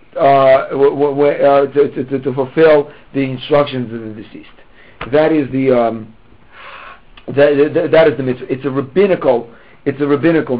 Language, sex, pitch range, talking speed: English, male, 130-155 Hz, 175 wpm